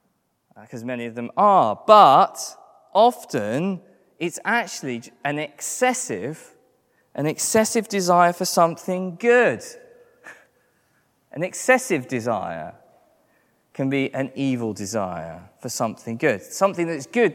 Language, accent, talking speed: English, British, 110 wpm